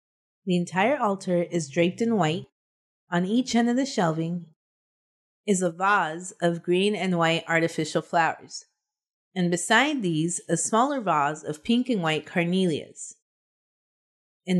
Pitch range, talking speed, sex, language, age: 165-210 Hz, 140 wpm, female, English, 30-49